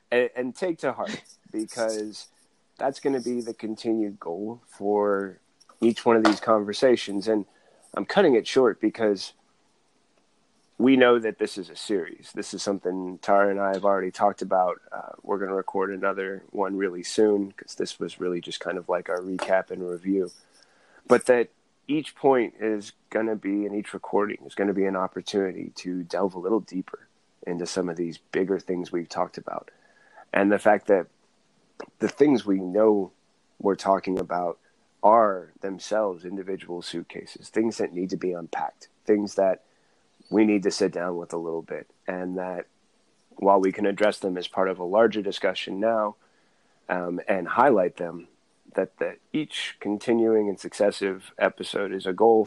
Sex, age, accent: male, 30-49, American